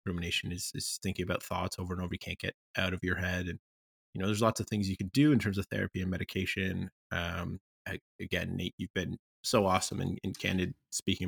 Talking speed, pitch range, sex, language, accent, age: 235 wpm, 90-105 Hz, male, English, American, 20-39